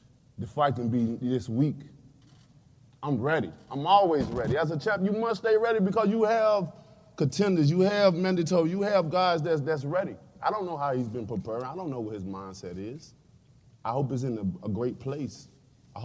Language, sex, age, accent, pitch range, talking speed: English, male, 20-39, American, 105-150 Hz, 200 wpm